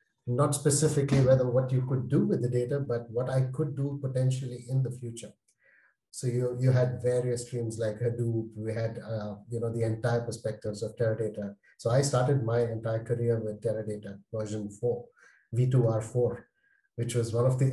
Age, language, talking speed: 30-49, English, 180 wpm